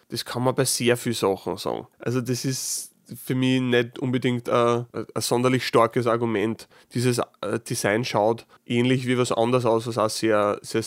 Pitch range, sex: 115-130 Hz, male